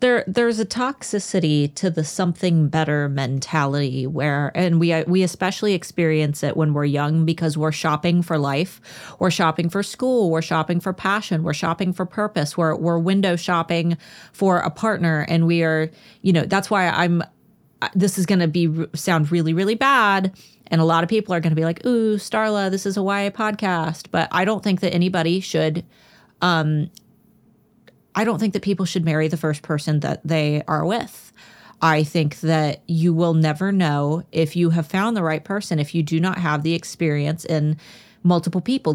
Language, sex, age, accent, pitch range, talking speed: English, female, 30-49, American, 160-195 Hz, 190 wpm